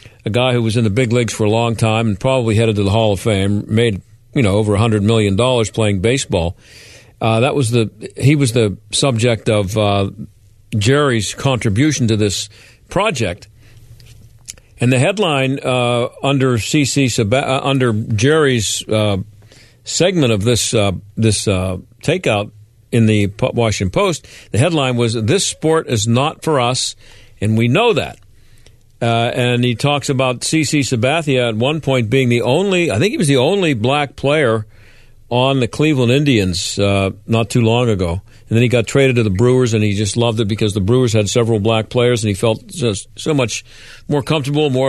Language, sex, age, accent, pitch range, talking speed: English, male, 50-69, American, 110-130 Hz, 185 wpm